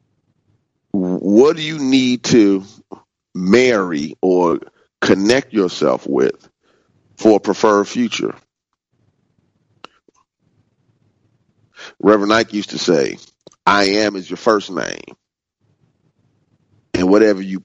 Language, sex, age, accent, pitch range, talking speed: English, male, 40-59, American, 100-125 Hz, 95 wpm